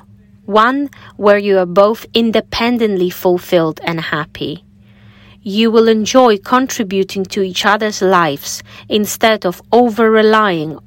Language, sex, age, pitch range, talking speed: English, female, 30-49, 165-215 Hz, 115 wpm